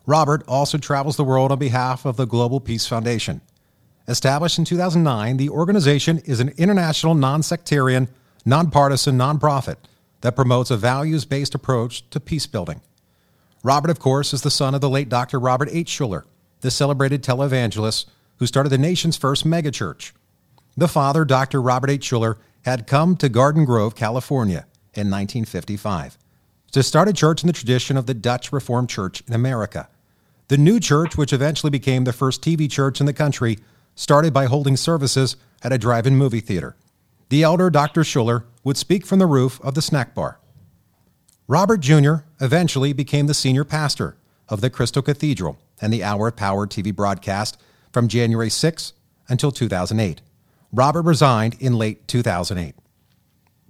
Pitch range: 120-150 Hz